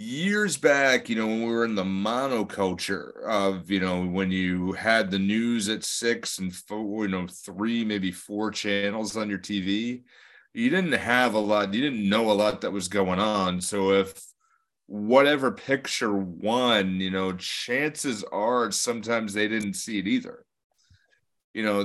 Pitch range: 100-140 Hz